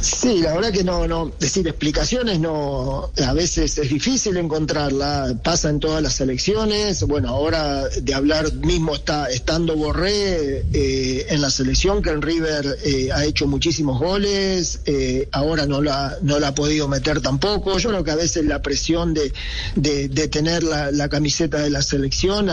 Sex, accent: male, Argentinian